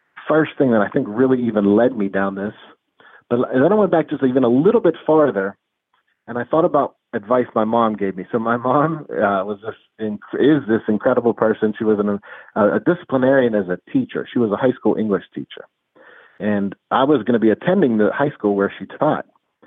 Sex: male